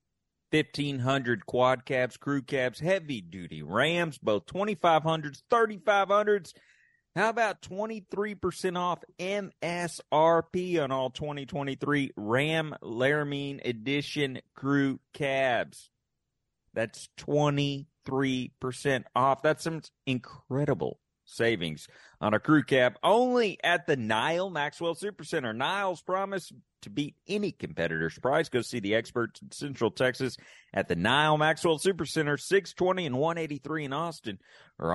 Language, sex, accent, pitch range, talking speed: English, male, American, 120-165 Hz, 115 wpm